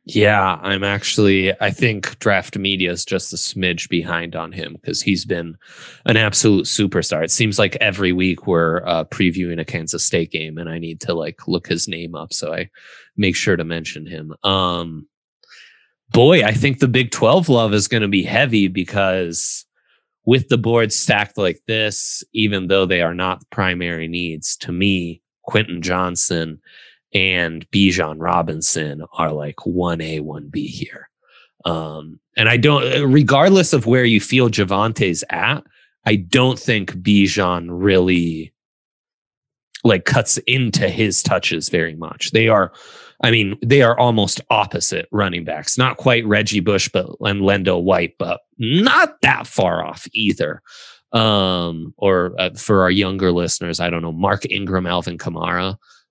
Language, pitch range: English, 85-105 Hz